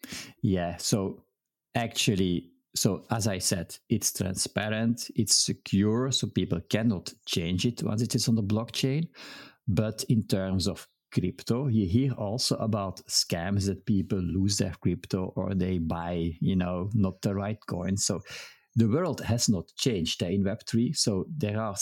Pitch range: 95-120 Hz